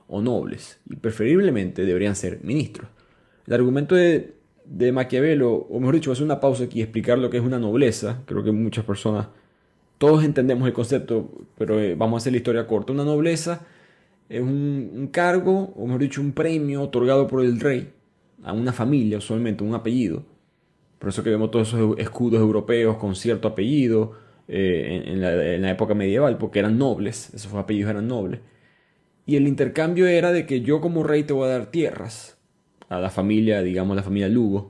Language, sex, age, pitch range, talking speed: Spanish, male, 20-39, 110-150 Hz, 190 wpm